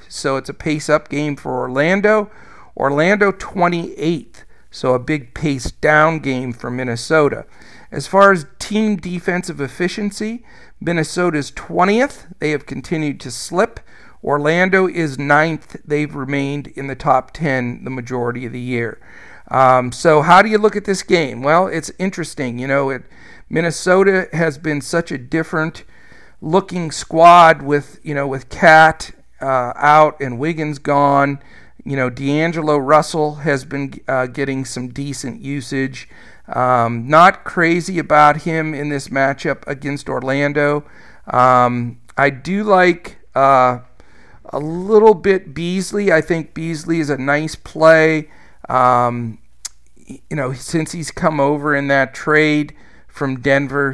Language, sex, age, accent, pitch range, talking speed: English, male, 50-69, American, 135-165 Hz, 140 wpm